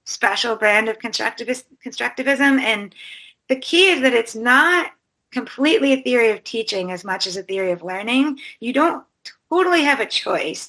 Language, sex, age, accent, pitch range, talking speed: English, female, 30-49, American, 205-260 Hz, 170 wpm